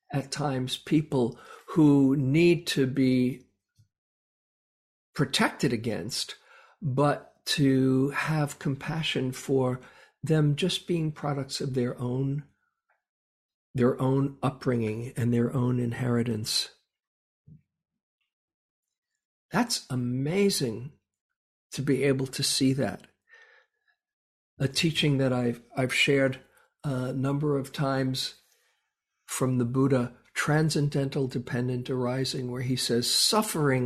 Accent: American